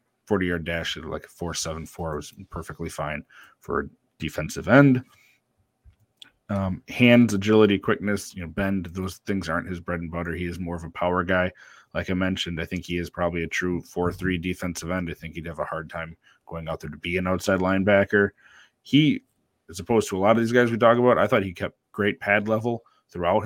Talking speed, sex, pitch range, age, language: 215 wpm, male, 85-105 Hz, 30-49, English